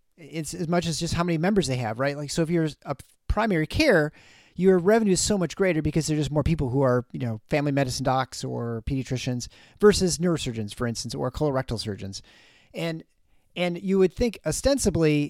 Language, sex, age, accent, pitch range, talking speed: English, male, 40-59, American, 135-175 Hz, 200 wpm